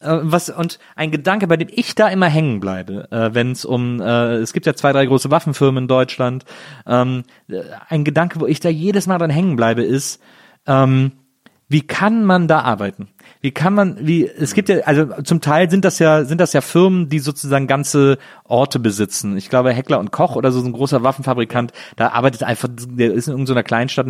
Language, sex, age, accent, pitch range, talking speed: German, male, 30-49, German, 120-155 Hz, 200 wpm